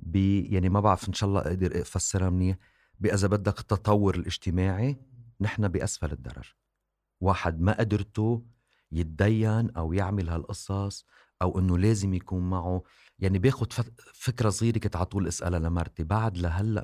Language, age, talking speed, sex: Arabic, 40-59, 135 wpm, male